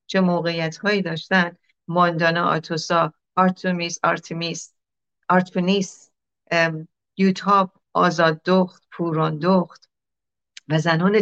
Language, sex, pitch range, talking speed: Persian, female, 160-185 Hz, 90 wpm